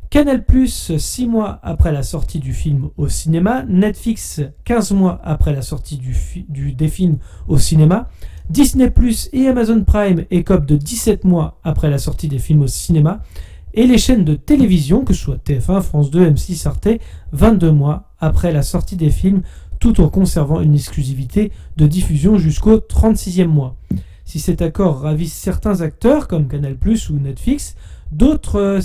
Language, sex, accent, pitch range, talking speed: French, male, French, 150-200 Hz, 165 wpm